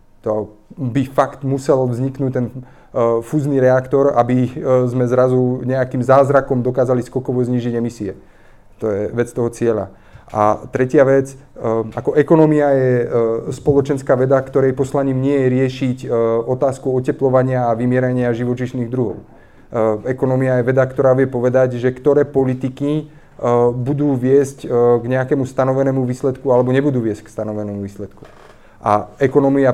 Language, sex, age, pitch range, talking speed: Slovak, male, 30-49, 125-140 Hz, 145 wpm